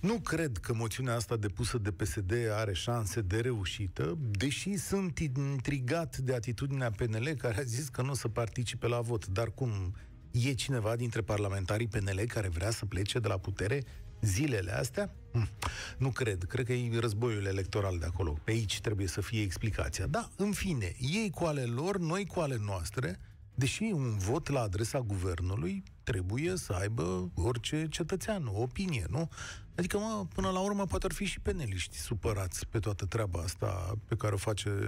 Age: 40-59